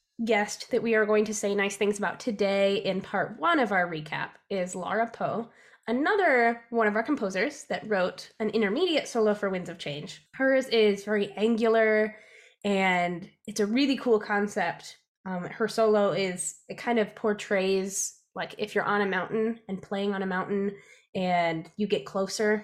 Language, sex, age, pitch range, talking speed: English, female, 10-29, 190-230 Hz, 180 wpm